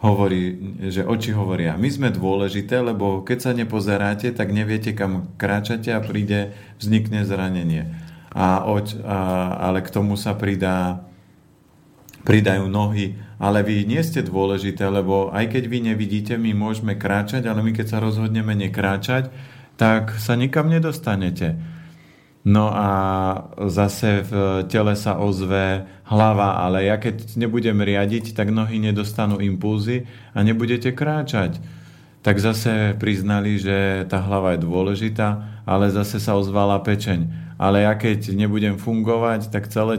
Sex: male